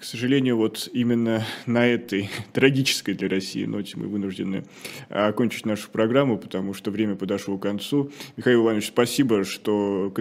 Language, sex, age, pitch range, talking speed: Russian, male, 20-39, 100-120 Hz, 155 wpm